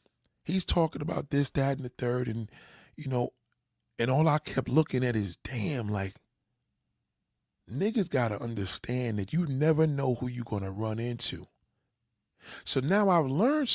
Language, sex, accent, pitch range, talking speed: English, male, American, 110-140 Hz, 160 wpm